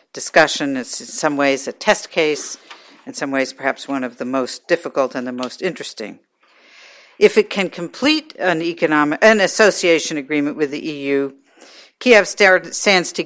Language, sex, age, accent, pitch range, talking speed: English, female, 60-79, American, 155-210 Hz, 165 wpm